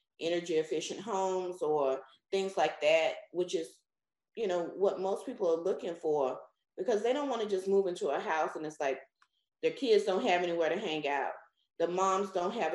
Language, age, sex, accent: English, 30-49, female, American